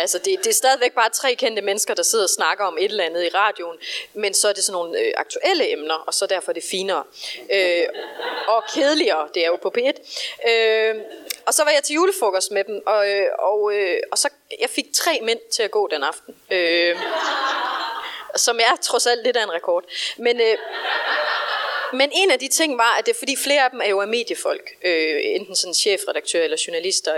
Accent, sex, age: native, female, 30-49